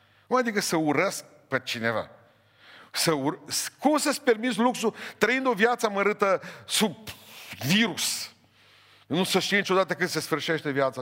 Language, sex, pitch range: Romanian, male, 115-175 Hz